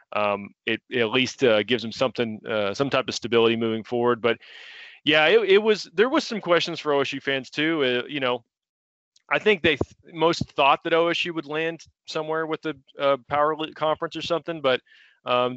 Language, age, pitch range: English, 30-49, 120-150 Hz